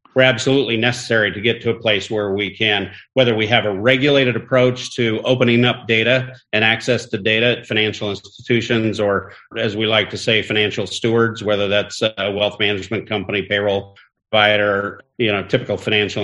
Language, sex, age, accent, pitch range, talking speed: English, male, 50-69, American, 100-115 Hz, 175 wpm